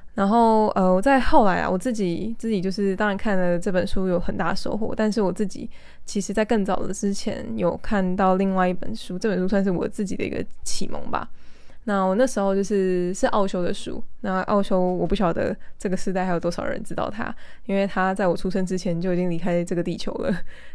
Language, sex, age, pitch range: Chinese, female, 10-29, 180-210 Hz